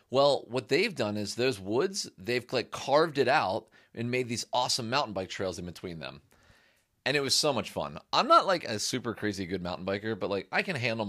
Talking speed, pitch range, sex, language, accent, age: 220 wpm, 100-130 Hz, male, English, American, 30-49